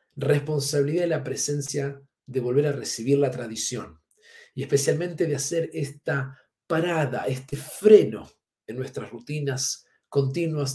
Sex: male